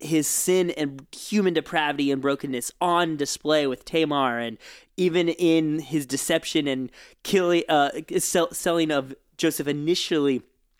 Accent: American